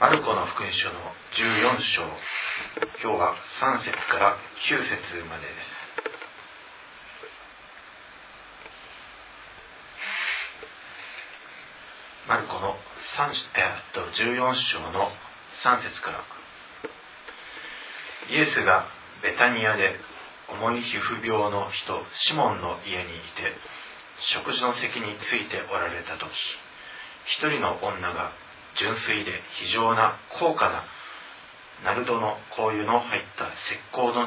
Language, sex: Japanese, male